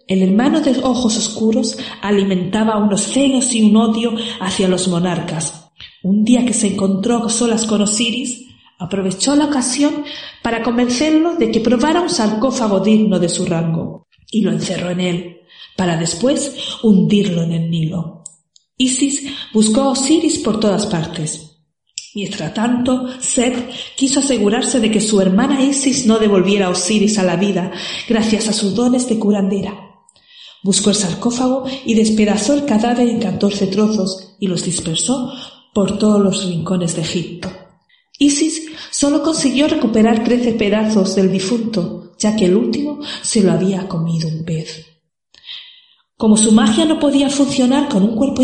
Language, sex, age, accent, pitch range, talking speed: Spanish, female, 40-59, Spanish, 190-255 Hz, 150 wpm